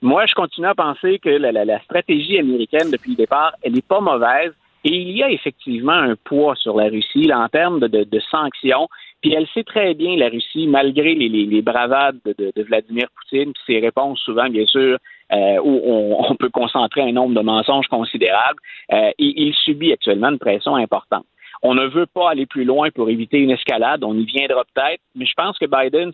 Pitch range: 120-195 Hz